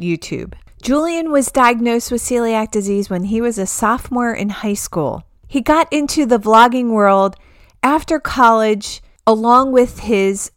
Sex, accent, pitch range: female, American, 200-255 Hz